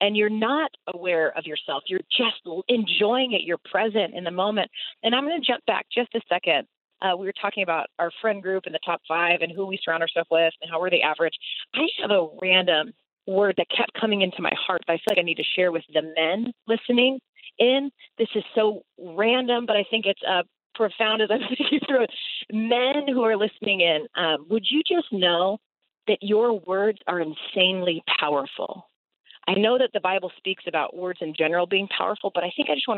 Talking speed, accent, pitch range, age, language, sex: 220 wpm, American, 175-230 Hz, 40-59, English, female